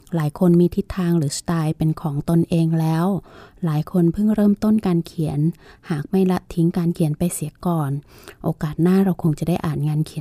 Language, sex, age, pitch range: Thai, female, 20-39, 150-175 Hz